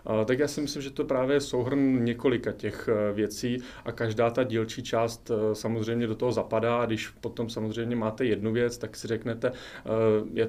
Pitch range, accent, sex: 110-125 Hz, native, male